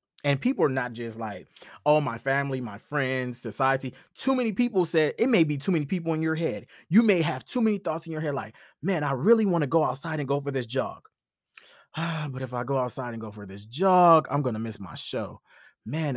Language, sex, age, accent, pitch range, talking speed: English, male, 20-39, American, 125-205 Hz, 240 wpm